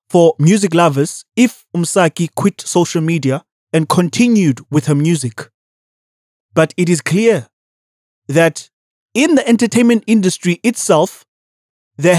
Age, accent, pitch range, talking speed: 20-39, South African, 150-200 Hz, 120 wpm